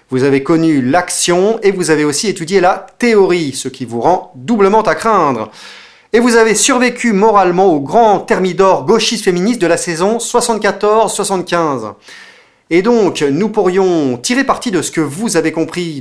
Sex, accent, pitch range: male, French, 145-205 Hz